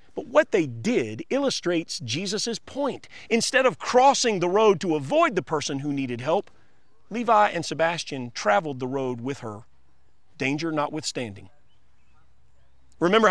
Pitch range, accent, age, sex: 130-215 Hz, American, 40-59, male